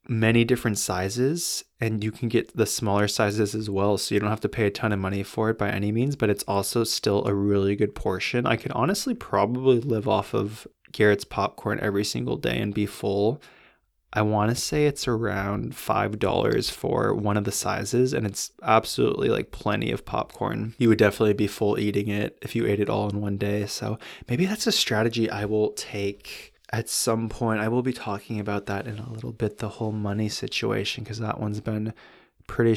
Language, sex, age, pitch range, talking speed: English, male, 20-39, 105-125 Hz, 210 wpm